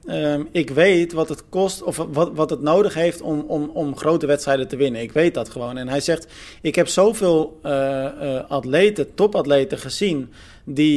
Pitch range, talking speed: 140-170 Hz, 185 wpm